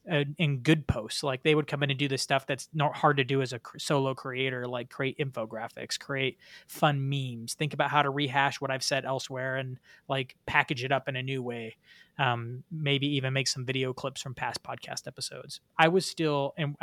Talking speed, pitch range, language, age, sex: 220 wpm, 135-160 Hz, English, 20-39, male